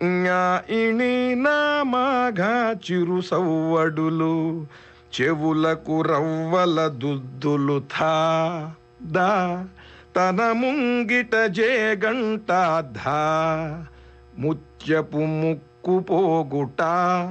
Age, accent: 50-69, native